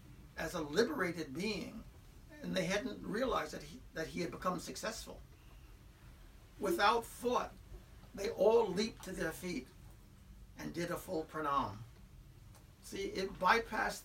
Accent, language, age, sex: American, English, 60-79, male